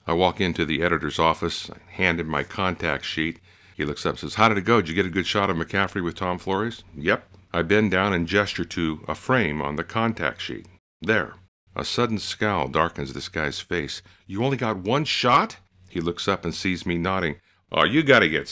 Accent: American